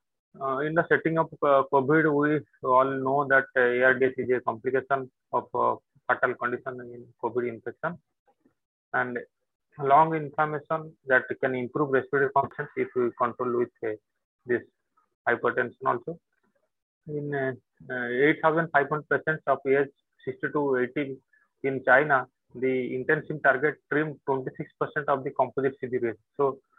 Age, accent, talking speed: 30-49, Indian, 135 wpm